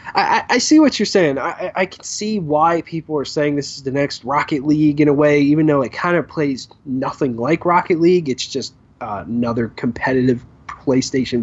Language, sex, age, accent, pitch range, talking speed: English, male, 20-39, American, 115-155 Hz, 210 wpm